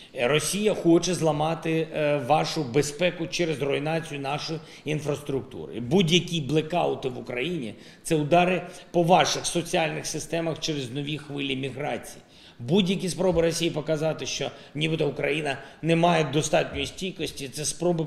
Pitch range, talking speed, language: 140-170 Hz, 125 wpm, Ukrainian